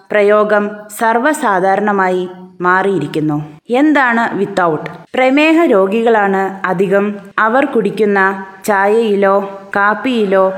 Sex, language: female, Malayalam